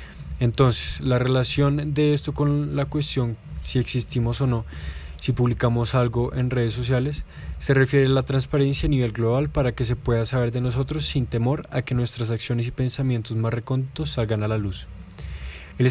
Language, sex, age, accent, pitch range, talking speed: Spanish, male, 20-39, Colombian, 115-130 Hz, 180 wpm